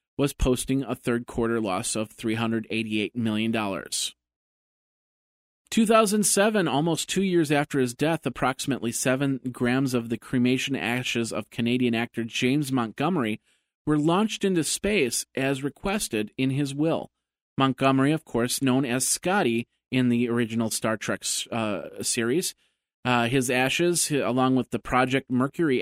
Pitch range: 115-145 Hz